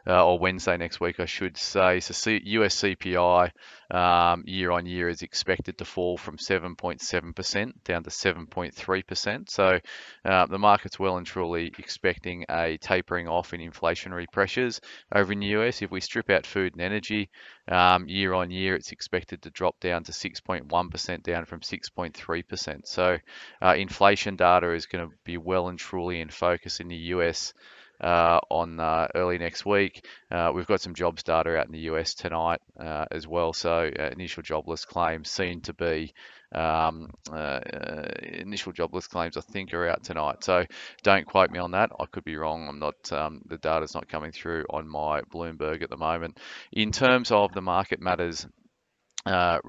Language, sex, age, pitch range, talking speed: English, male, 20-39, 85-95 Hz, 180 wpm